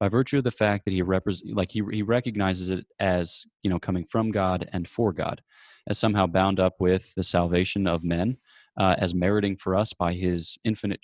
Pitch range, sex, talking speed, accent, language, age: 95-110 Hz, male, 210 wpm, American, English, 20-39